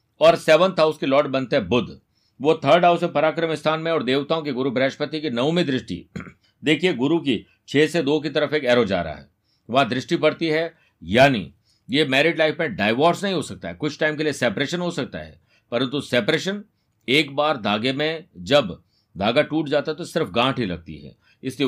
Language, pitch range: Hindi, 120-155 Hz